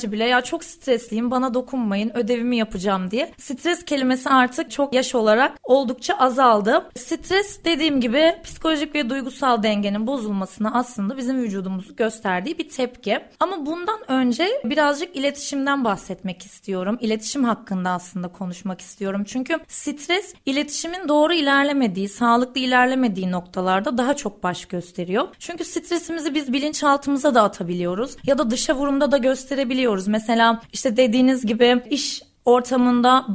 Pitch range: 210-280 Hz